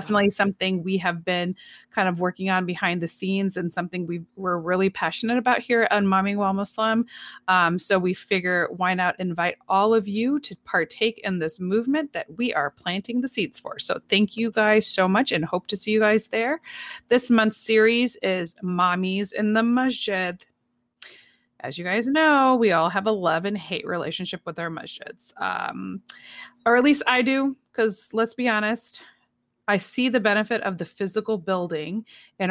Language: English